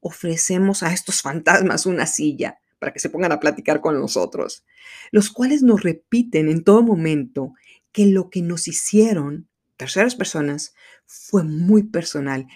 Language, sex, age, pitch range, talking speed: Spanish, female, 40-59, 150-210 Hz, 150 wpm